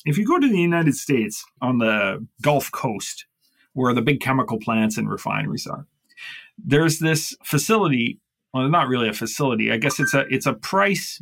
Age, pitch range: 30-49, 115-160 Hz